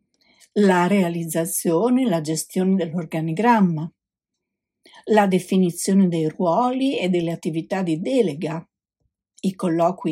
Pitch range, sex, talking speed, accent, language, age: 170-205 Hz, female, 100 wpm, native, Italian, 50-69